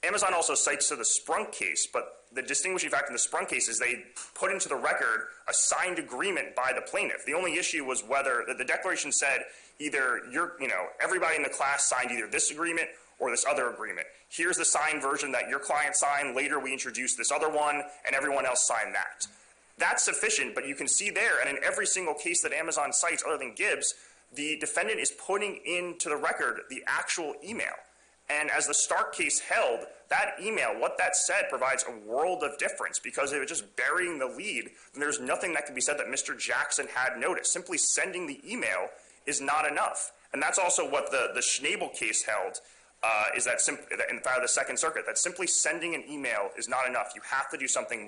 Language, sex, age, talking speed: English, male, 30-49, 215 wpm